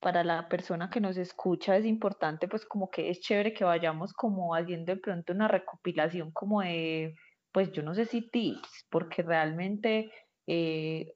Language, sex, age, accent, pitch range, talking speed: Spanish, female, 20-39, Colombian, 165-200 Hz, 170 wpm